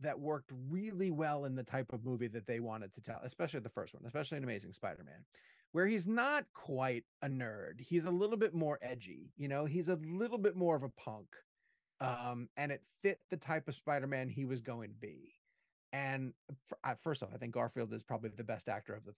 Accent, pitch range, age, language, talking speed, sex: American, 120-160 Hz, 30-49, English, 220 wpm, male